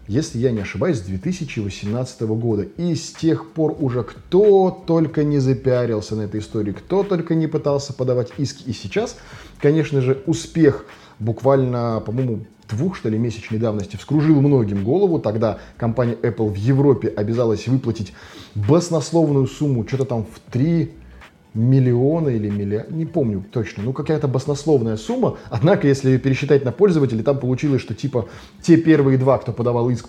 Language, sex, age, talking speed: Russian, male, 20-39, 155 wpm